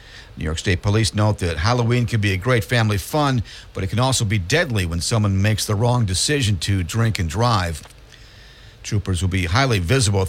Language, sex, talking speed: English, male, 200 wpm